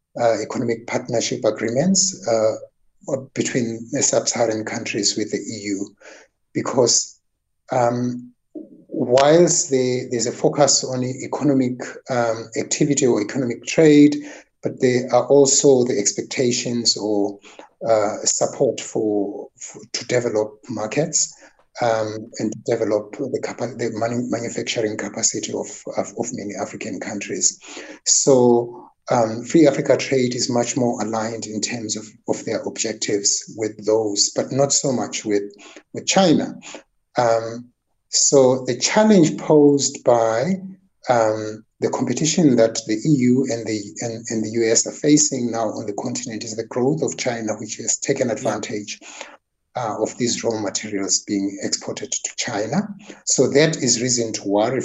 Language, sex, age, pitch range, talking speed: English, male, 60-79, 110-140 Hz, 140 wpm